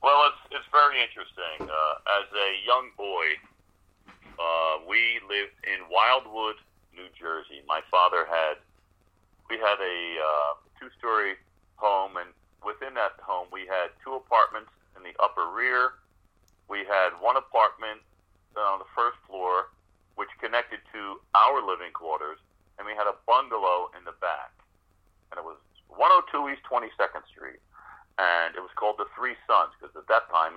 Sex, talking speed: male, 155 wpm